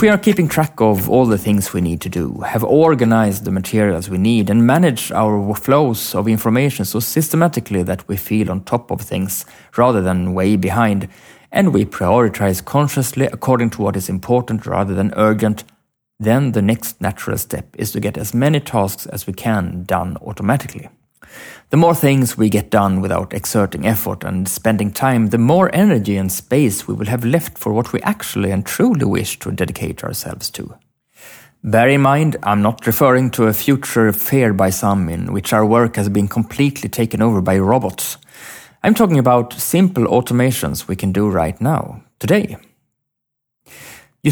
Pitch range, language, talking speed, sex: 100-130 Hz, English, 180 wpm, male